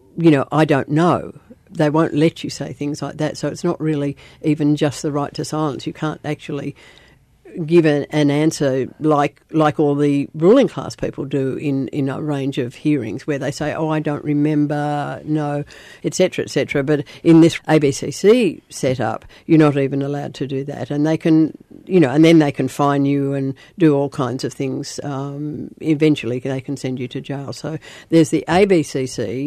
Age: 60-79